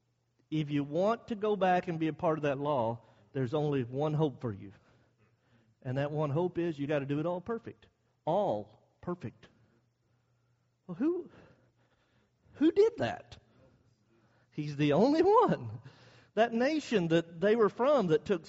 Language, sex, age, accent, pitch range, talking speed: English, male, 50-69, American, 125-205 Hz, 160 wpm